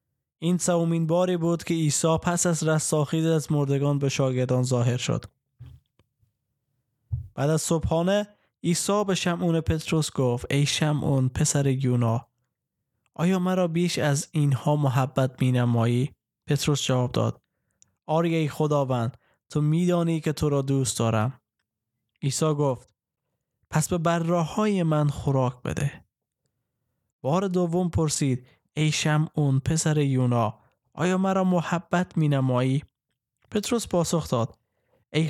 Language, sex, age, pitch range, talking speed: Persian, male, 20-39, 130-165 Hz, 120 wpm